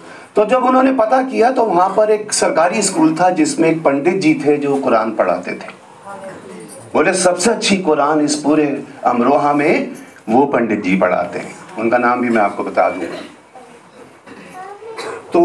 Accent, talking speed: native, 165 wpm